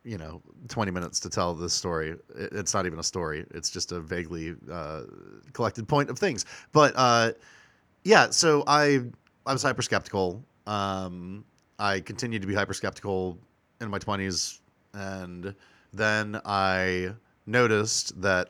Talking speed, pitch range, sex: 145 wpm, 90-115 Hz, male